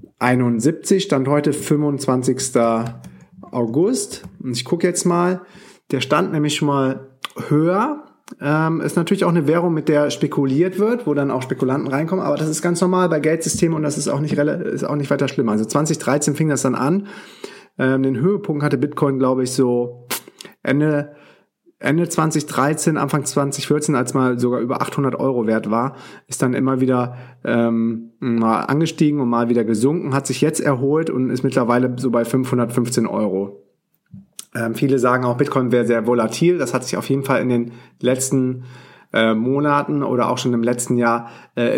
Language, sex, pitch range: German, male, 120-150 Hz